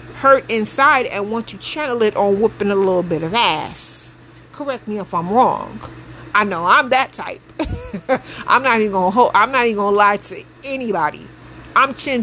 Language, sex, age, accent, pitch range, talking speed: English, female, 40-59, American, 195-260 Hz, 185 wpm